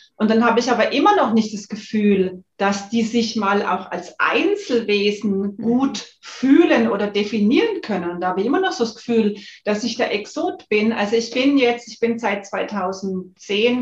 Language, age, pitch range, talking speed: German, 40-59, 200-250 Hz, 185 wpm